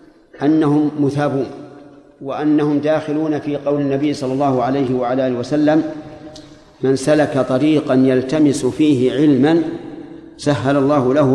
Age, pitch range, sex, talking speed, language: 50-69, 135-155 Hz, male, 110 wpm, Arabic